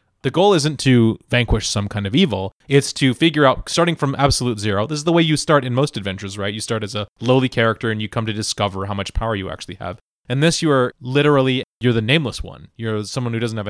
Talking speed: 255 wpm